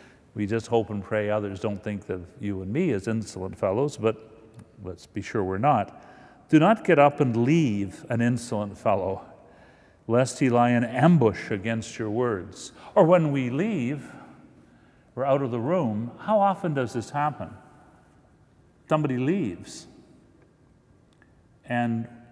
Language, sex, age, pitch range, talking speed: English, male, 50-69, 105-125 Hz, 150 wpm